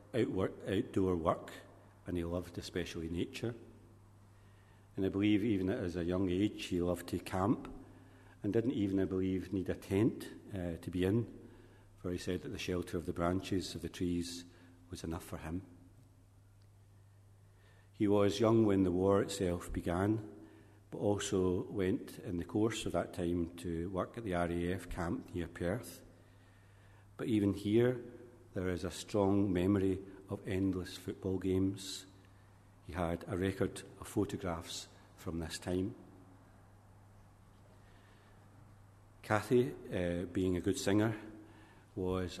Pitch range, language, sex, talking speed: 90-100 Hz, English, male, 140 wpm